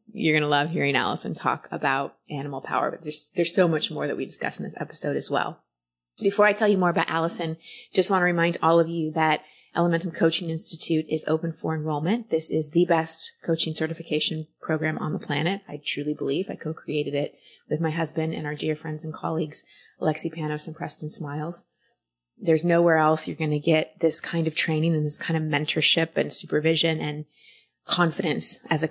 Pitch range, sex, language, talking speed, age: 155-175 Hz, female, English, 195 wpm, 20-39